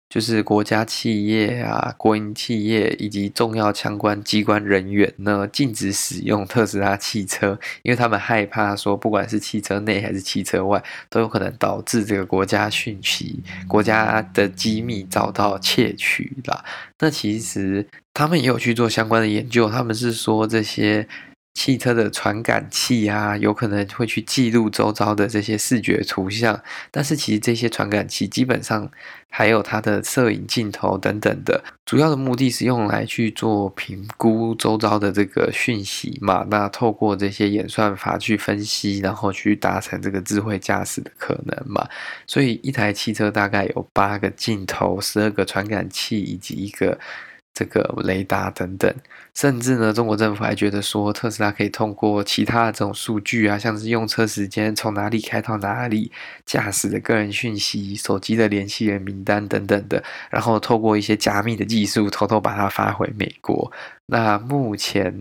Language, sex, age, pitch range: Chinese, male, 20-39, 100-115 Hz